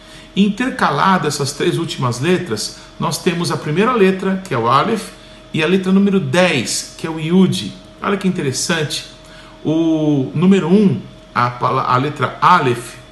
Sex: male